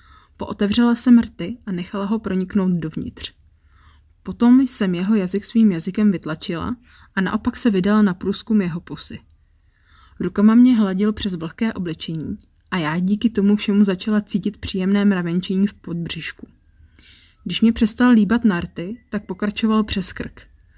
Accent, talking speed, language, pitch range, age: native, 140 wpm, Czech, 165-215 Hz, 20-39